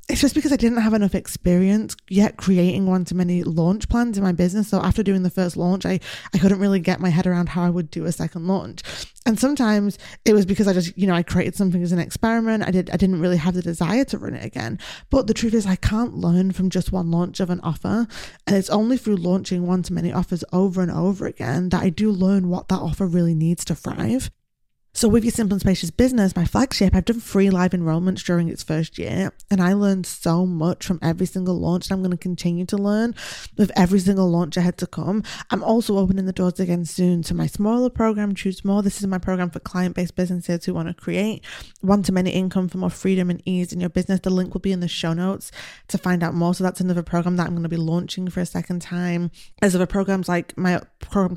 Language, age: English, 20-39